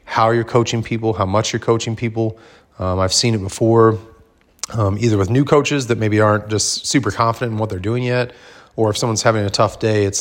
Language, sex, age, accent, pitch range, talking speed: English, male, 30-49, American, 100-115 Hz, 225 wpm